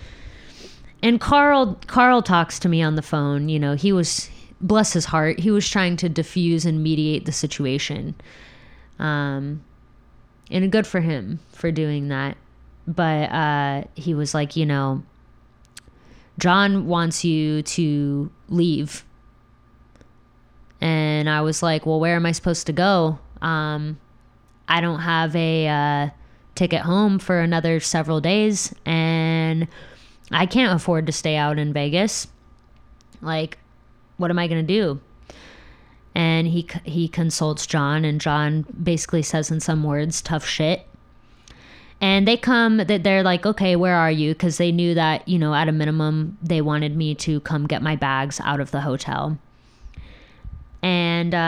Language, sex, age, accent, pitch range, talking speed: English, female, 20-39, American, 150-175 Hz, 150 wpm